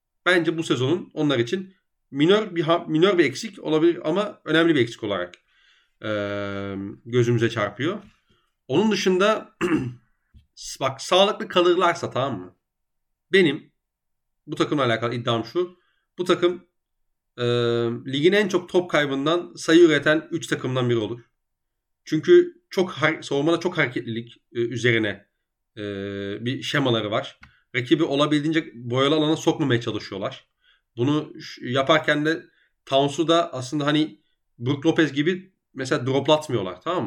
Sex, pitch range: male, 120-170 Hz